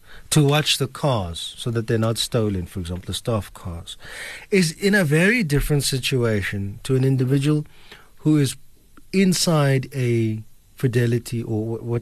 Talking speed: 150 wpm